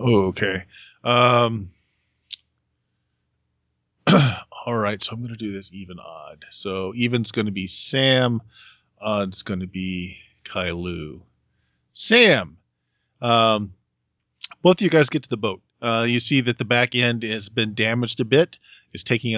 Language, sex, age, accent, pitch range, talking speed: English, male, 40-59, American, 95-120 Hz, 150 wpm